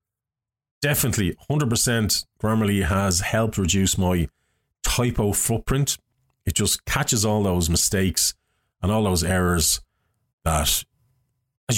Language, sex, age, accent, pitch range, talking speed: English, male, 30-49, Irish, 90-120 Hz, 105 wpm